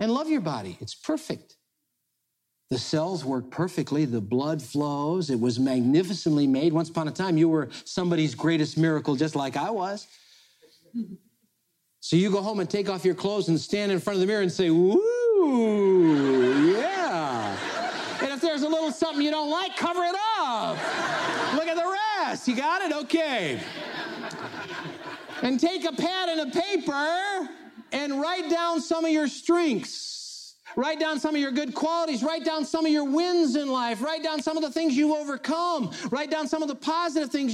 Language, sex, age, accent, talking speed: English, male, 50-69, American, 180 wpm